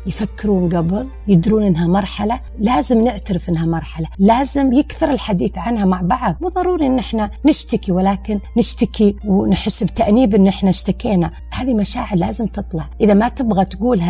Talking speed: 150 wpm